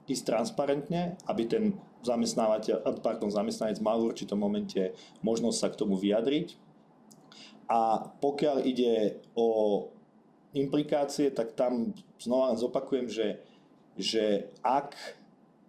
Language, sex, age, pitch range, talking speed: Slovak, male, 40-59, 105-130 Hz, 105 wpm